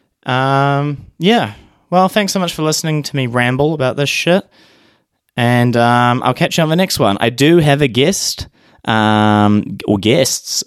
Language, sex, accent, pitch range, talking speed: English, male, Australian, 100-130 Hz, 175 wpm